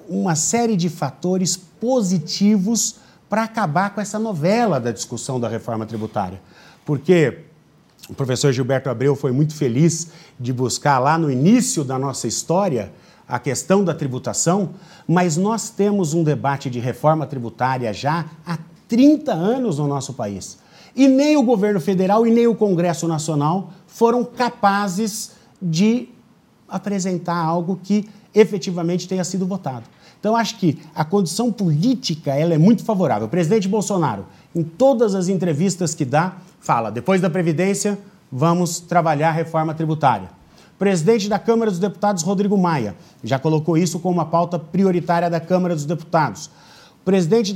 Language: Portuguese